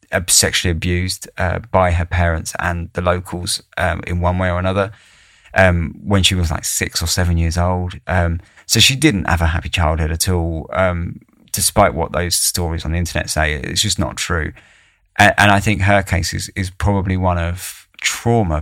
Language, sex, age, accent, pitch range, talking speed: English, male, 20-39, British, 85-100 Hz, 195 wpm